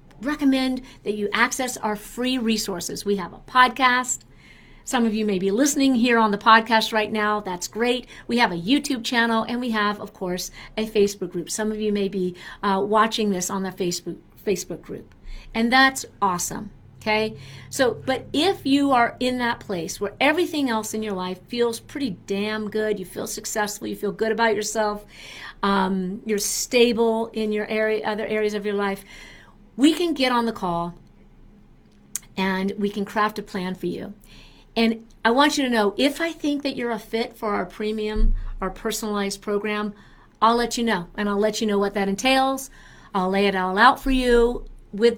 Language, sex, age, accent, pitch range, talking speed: English, female, 50-69, American, 200-240 Hz, 195 wpm